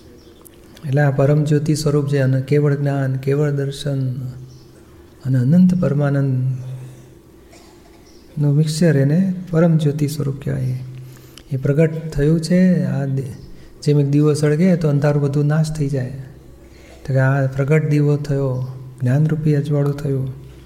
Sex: male